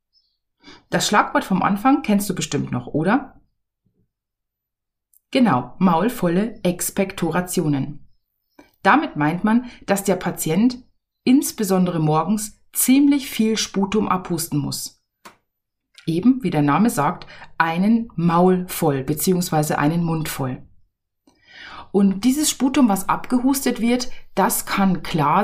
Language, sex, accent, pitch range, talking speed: German, female, German, 170-230 Hz, 110 wpm